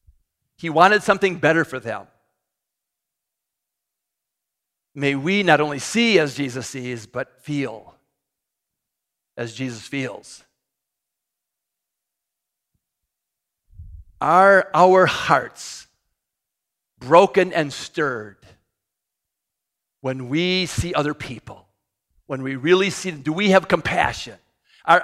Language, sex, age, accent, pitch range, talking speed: English, male, 50-69, American, 135-190 Hz, 95 wpm